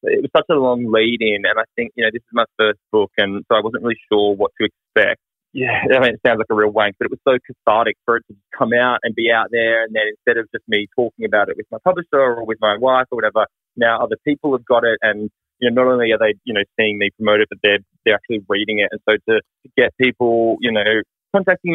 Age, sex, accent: 20-39, male, Australian